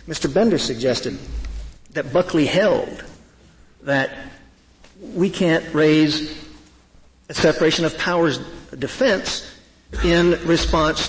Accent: American